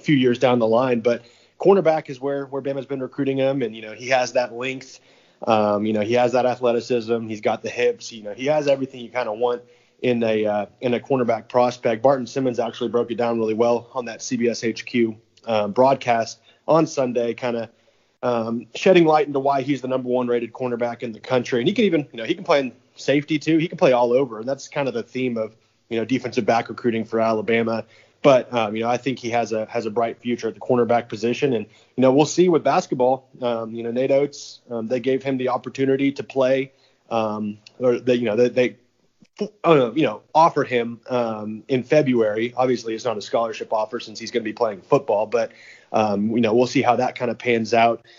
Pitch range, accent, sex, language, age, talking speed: 115-135 Hz, American, male, English, 30-49, 235 wpm